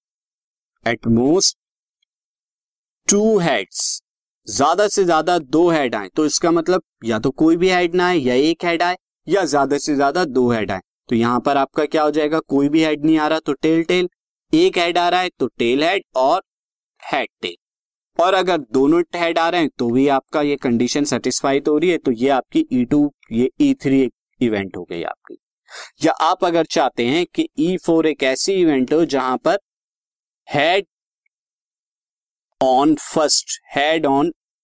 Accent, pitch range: native, 135-180 Hz